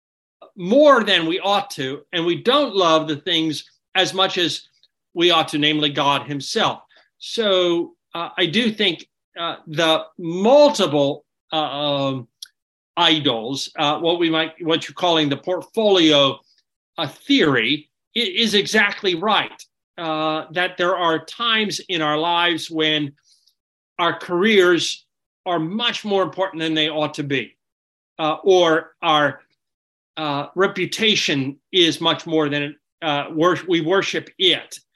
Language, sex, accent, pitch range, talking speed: English, male, American, 150-185 Hz, 135 wpm